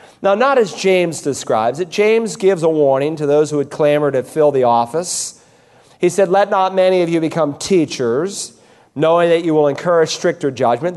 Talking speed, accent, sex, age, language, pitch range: 190 wpm, American, male, 40-59, English, 145-180 Hz